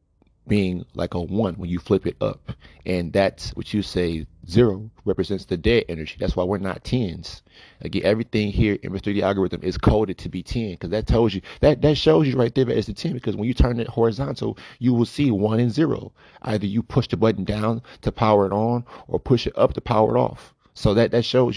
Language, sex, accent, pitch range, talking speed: English, male, American, 90-110 Hz, 235 wpm